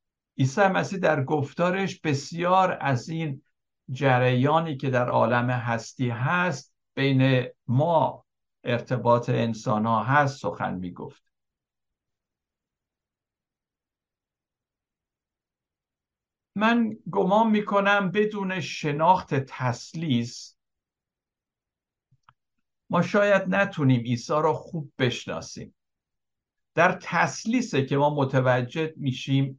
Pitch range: 125-160 Hz